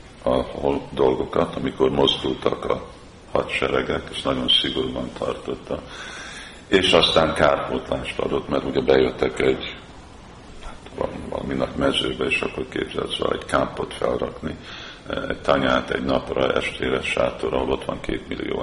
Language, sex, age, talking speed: Hungarian, male, 50-69, 130 wpm